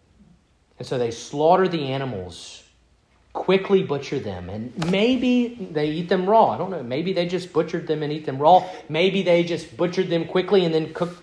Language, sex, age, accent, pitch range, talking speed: English, male, 40-59, American, 110-175 Hz, 190 wpm